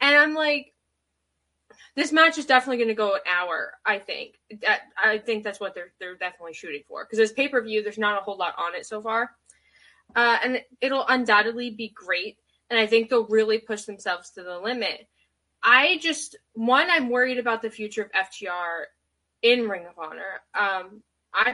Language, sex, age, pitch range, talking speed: English, female, 10-29, 195-255 Hz, 190 wpm